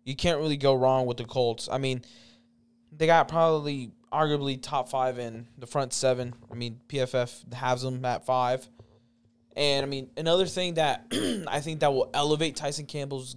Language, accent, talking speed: English, American, 180 wpm